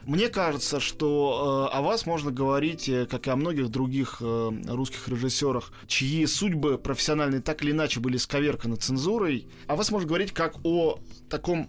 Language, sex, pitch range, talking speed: Russian, male, 135-175 Hz, 170 wpm